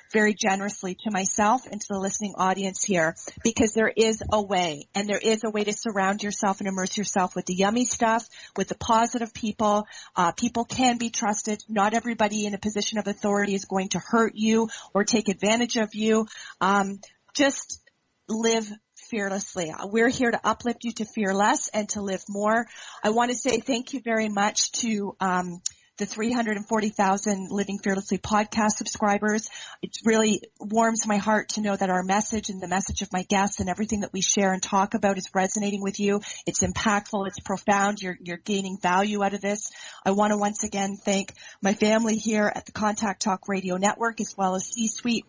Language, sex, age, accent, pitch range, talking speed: English, female, 40-59, American, 195-220 Hz, 195 wpm